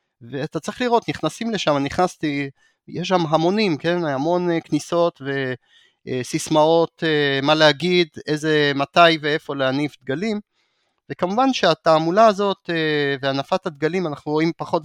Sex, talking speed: male, 115 wpm